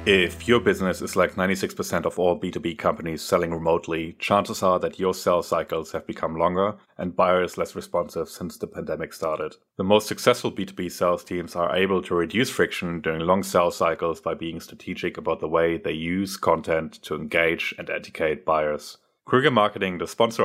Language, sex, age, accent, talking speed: English, male, 30-49, German, 180 wpm